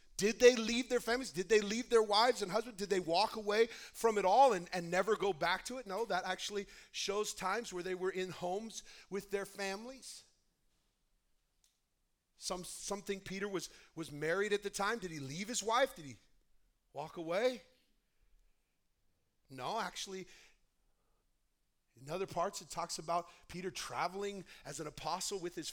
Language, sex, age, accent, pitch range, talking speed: English, male, 40-59, American, 185-245 Hz, 170 wpm